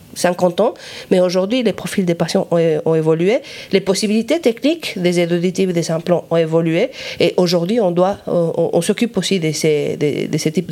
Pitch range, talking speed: 175-215 Hz, 195 wpm